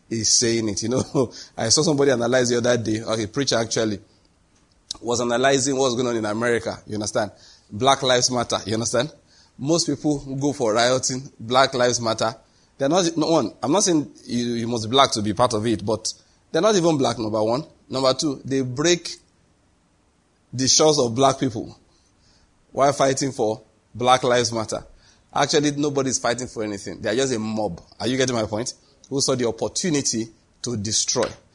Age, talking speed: 30-49, 185 wpm